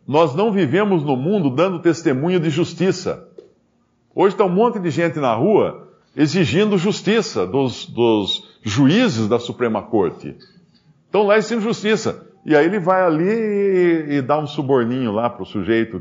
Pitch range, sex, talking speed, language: 125-200 Hz, male, 155 wpm, Portuguese